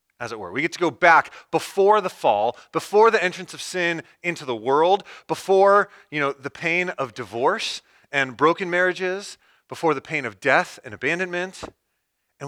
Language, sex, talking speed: English, male, 180 wpm